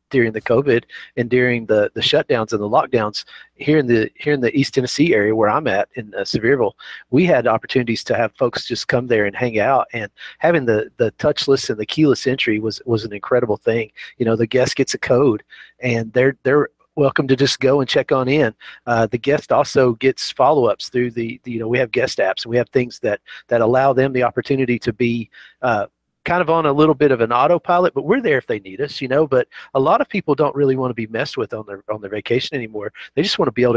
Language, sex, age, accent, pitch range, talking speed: English, male, 40-59, American, 120-145 Hz, 250 wpm